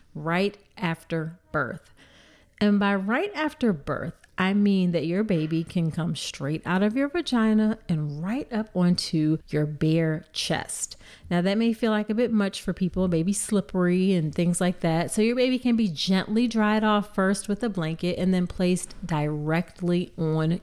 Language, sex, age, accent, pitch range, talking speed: English, female, 40-59, American, 165-215 Hz, 175 wpm